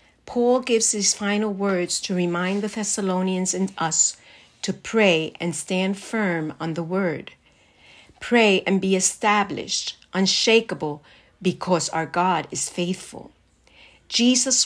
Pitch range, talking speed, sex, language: 170-215 Hz, 125 wpm, female, English